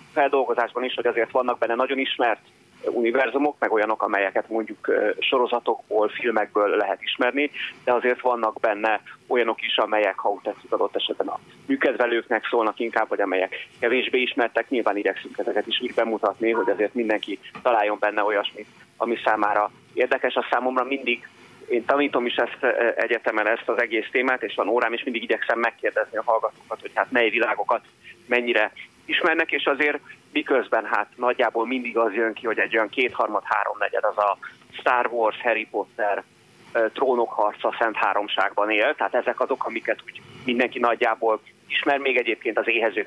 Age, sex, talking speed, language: 30-49, male, 155 wpm, Hungarian